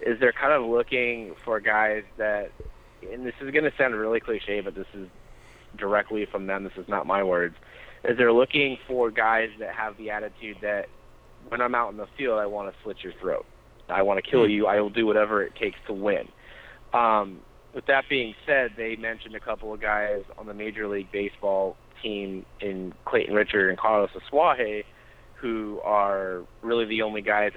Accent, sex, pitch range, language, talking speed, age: American, male, 100-115 Hz, English, 200 wpm, 30-49